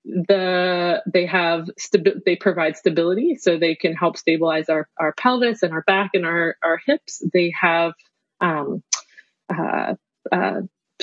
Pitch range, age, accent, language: 175-210 Hz, 30-49, American, English